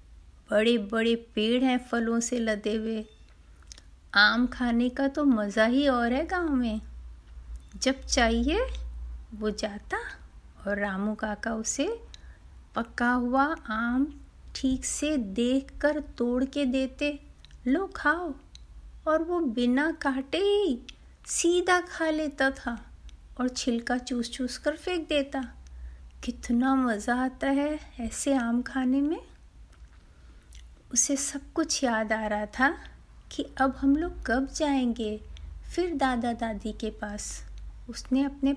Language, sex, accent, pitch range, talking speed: Hindi, female, native, 210-275 Hz, 125 wpm